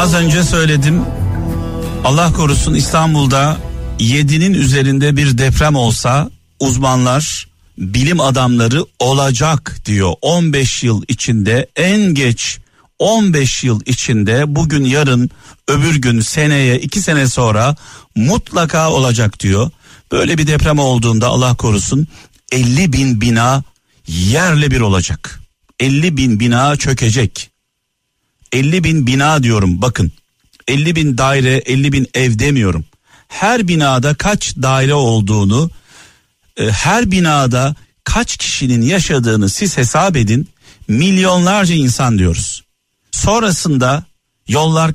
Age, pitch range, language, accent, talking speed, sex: 60-79, 120-160 Hz, Turkish, native, 110 wpm, male